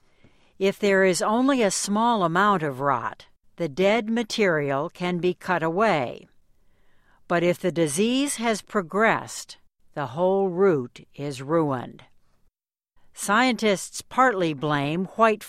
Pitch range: 150-205 Hz